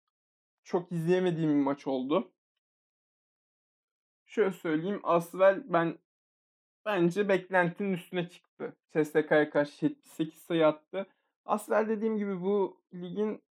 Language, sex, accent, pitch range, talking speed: Turkish, male, native, 160-205 Hz, 100 wpm